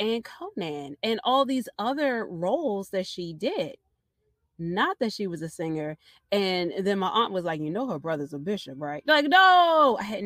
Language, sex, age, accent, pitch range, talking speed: English, female, 30-49, American, 155-200 Hz, 195 wpm